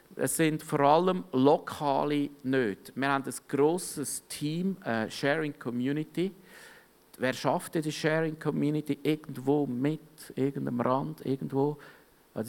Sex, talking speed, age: male, 120 wpm, 50-69